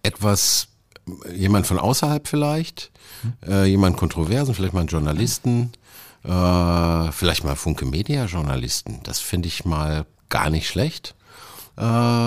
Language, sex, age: German, male, 50-69